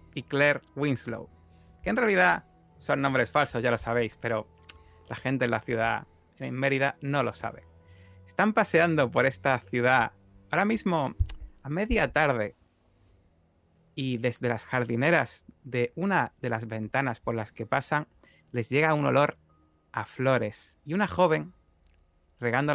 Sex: male